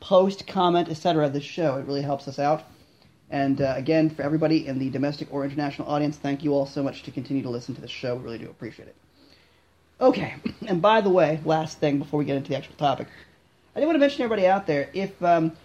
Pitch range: 140-170 Hz